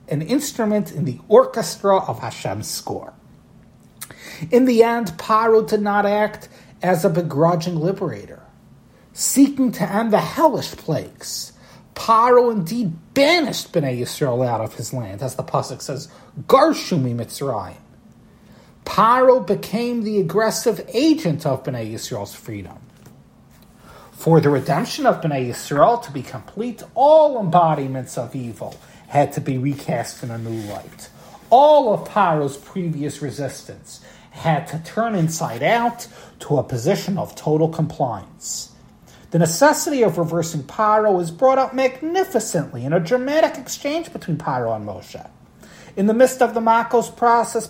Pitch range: 145-230 Hz